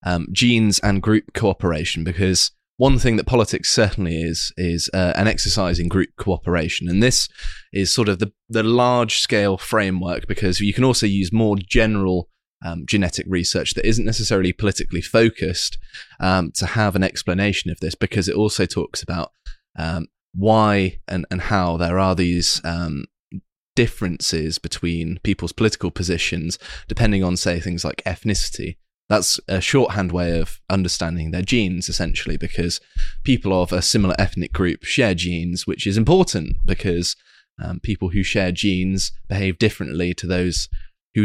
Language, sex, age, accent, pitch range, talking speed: English, male, 20-39, British, 85-105 Hz, 155 wpm